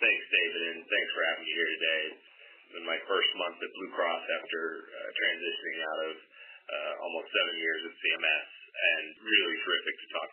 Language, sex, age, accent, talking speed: English, male, 30-49, American, 190 wpm